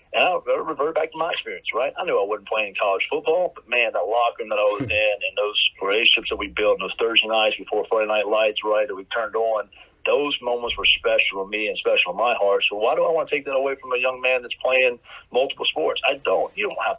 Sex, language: male, English